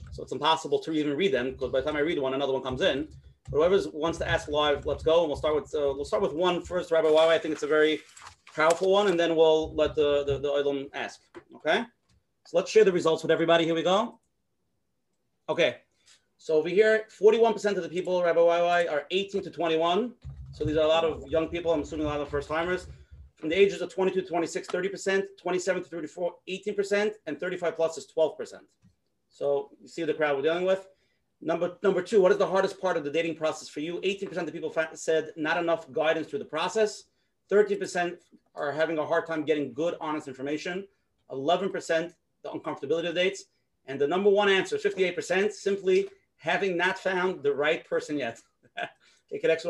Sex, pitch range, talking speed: male, 155-190 Hz, 215 wpm